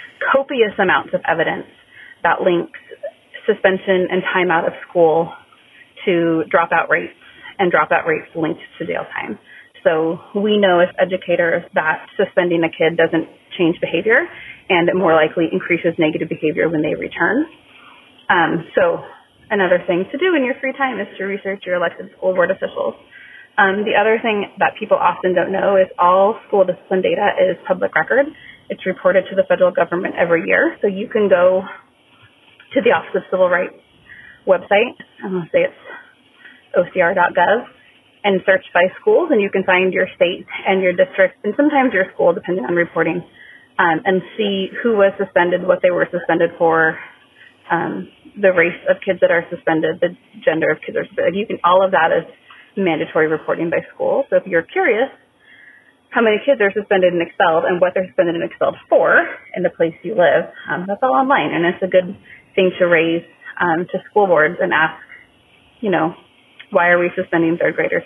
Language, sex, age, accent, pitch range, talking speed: English, female, 30-49, American, 175-220 Hz, 180 wpm